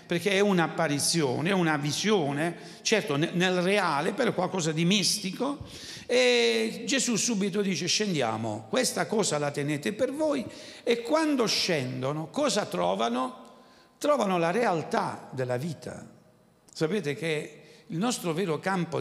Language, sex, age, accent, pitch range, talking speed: Italian, male, 60-79, native, 145-210 Hz, 125 wpm